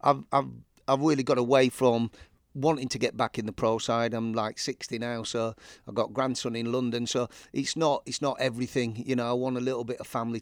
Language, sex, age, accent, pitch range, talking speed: English, male, 30-49, British, 115-130 Hz, 230 wpm